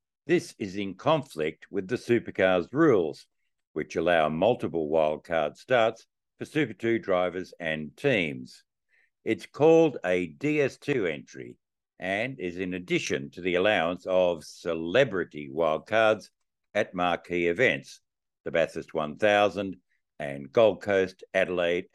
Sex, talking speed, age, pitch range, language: male, 120 wpm, 60-79, 85-115 Hz, English